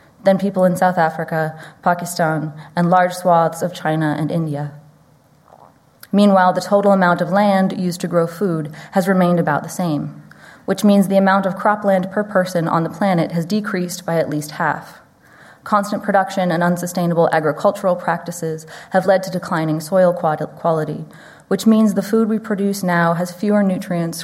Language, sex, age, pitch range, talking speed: English, female, 20-39, 160-190 Hz, 165 wpm